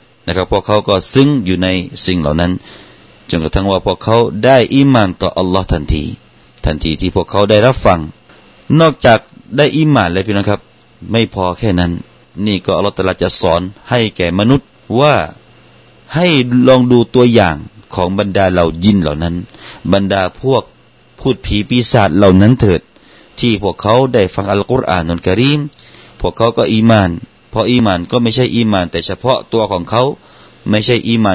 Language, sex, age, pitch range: Thai, male, 30-49, 90-115 Hz